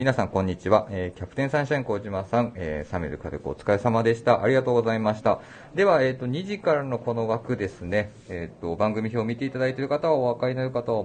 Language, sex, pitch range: Japanese, male, 95-125 Hz